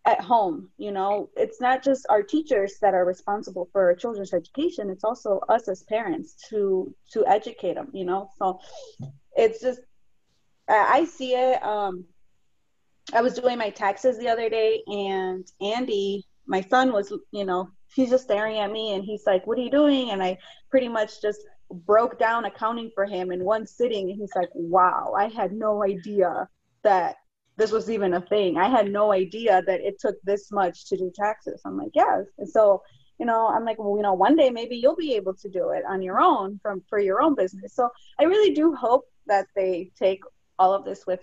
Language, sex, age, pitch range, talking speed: English, female, 20-39, 190-235 Hz, 205 wpm